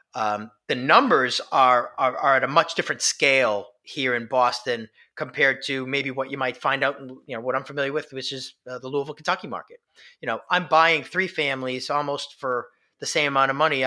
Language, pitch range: English, 125-155 Hz